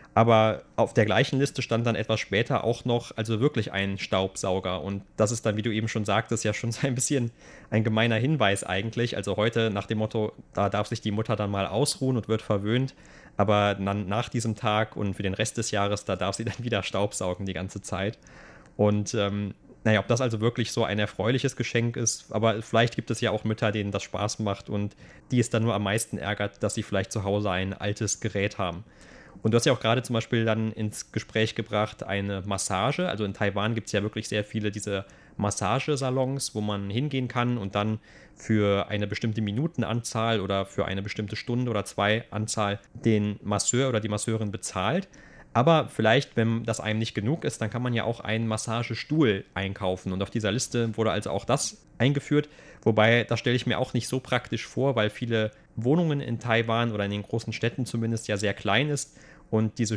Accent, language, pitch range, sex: German, German, 105-120 Hz, male